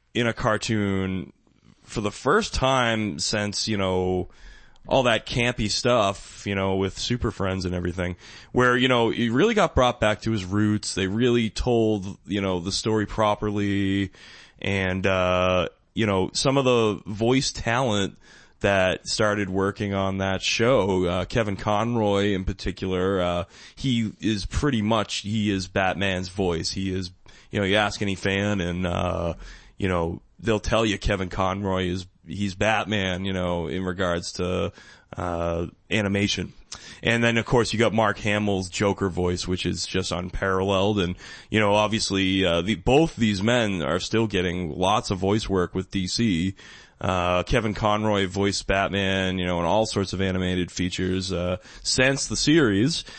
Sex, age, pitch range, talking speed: male, 20-39, 95-110 Hz, 165 wpm